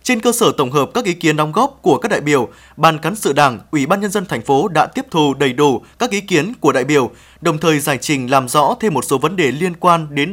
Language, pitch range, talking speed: Vietnamese, 145-205 Hz, 285 wpm